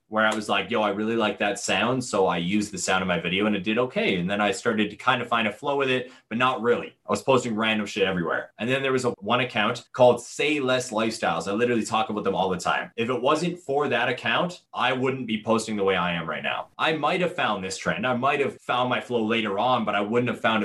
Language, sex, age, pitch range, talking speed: English, male, 20-39, 105-130 Hz, 275 wpm